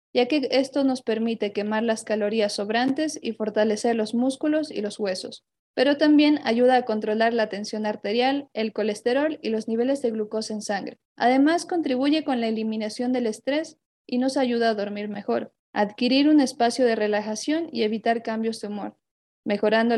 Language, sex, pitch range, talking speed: Spanish, female, 220-270 Hz, 170 wpm